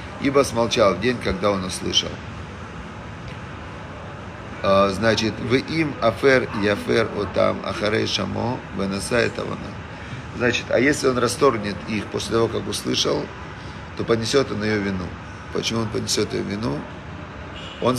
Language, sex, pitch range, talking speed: Russian, male, 95-115 Hz, 125 wpm